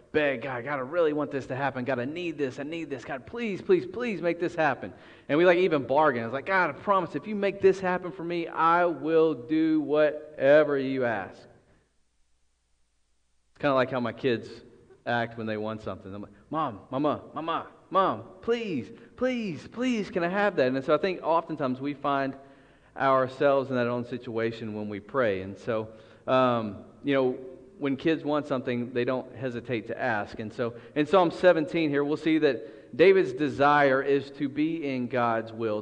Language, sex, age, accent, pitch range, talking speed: English, male, 40-59, American, 115-160 Hz, 195 wpm